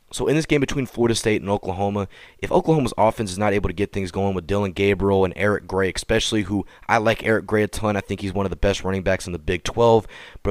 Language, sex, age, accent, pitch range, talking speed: English, male, 30-49, American, 95-120 Hz, 270 wpm